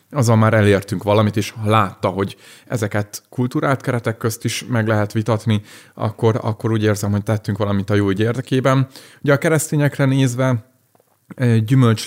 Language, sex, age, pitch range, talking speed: Hungarian, male, 30-49, 105-130 Hz, 155 wpm